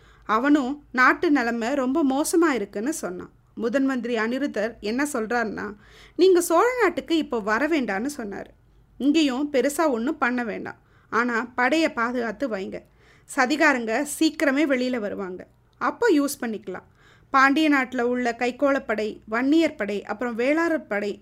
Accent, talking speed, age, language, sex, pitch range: native, 115 wpm, 20-39, Tamil, female, 230-315 Hz